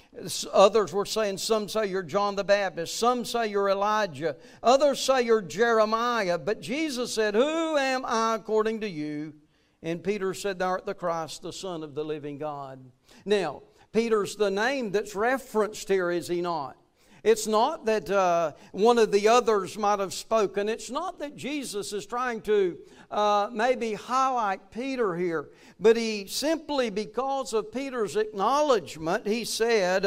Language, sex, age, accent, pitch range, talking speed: English, male, 60-79, American, 190-235 Hz, 160 wpm